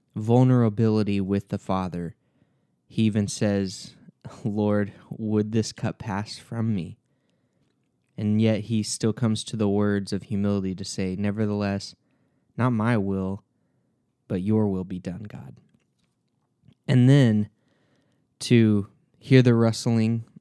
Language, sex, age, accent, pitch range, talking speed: English, male, 20-39, American, 100-120 Hz, 125 wpm